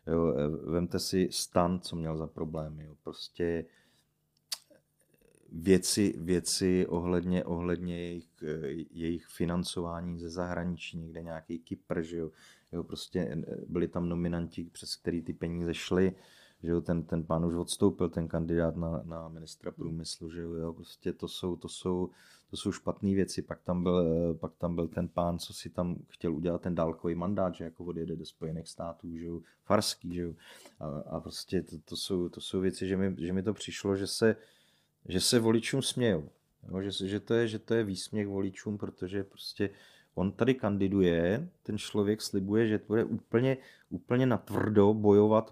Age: 30-49